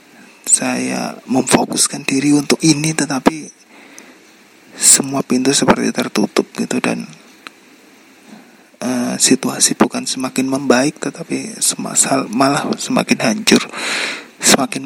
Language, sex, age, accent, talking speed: Indonesian, male, 30-49, native, 95 wpm